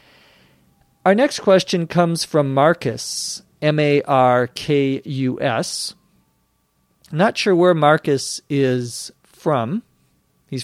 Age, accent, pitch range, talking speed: 40-59, American, 125-155 Hz, 80 wpm